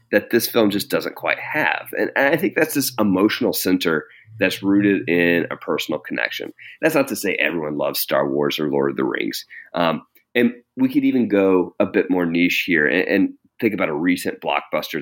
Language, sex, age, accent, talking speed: English, male, 30-49, American, 205 wpm